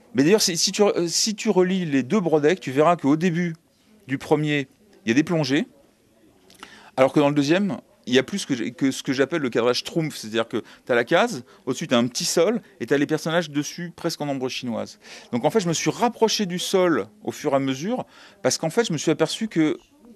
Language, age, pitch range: French, 30-49, 120-175 Hz